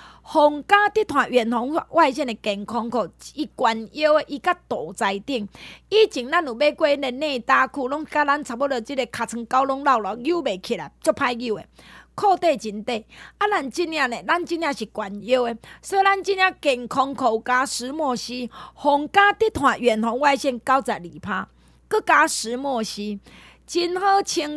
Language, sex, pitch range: Chinese, female, 235-335 Hz